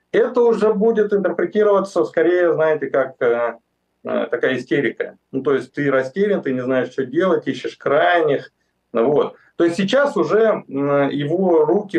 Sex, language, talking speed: male, Russian, 150 wpm